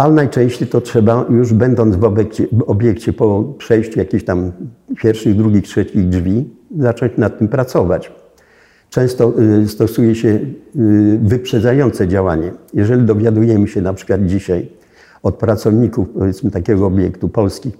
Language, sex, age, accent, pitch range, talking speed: Polish, male, 50-69, native, 100-120 Hz, 130 wpm